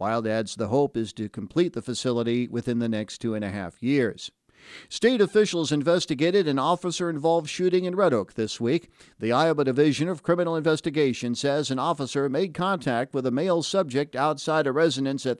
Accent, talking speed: American, 185 wpm